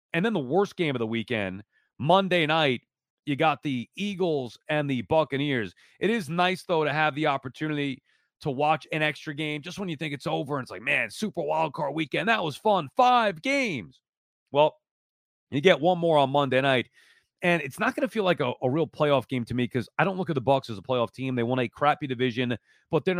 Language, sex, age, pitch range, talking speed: English, male, 30-49, 135-185 Hz, 230 wpm